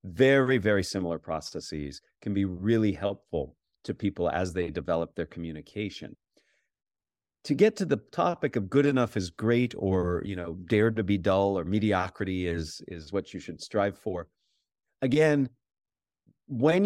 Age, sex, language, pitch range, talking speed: 40-59, male, English, 95-130 Hz, 155 wpm